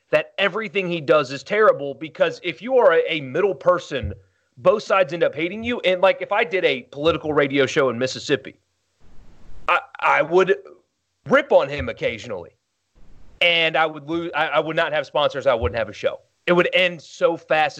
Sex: male